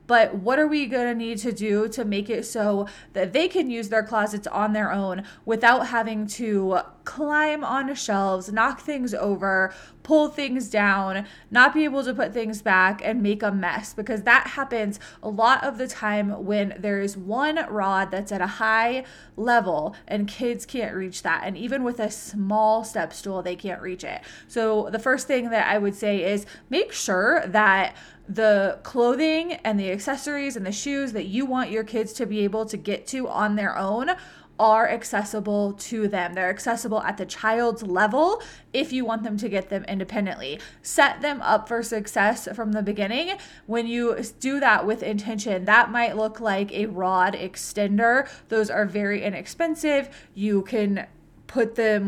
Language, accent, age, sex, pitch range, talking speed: English, American, 20-39, female, 200-245 Hz, 185 wpm